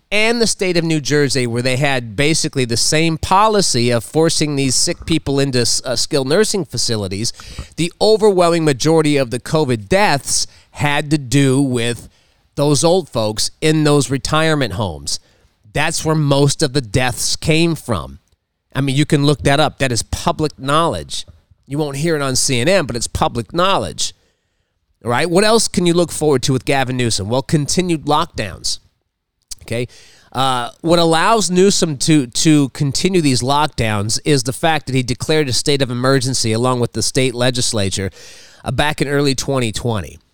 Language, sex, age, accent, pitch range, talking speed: English, male, 30-49, American, 120-160 Hz, 170 wpm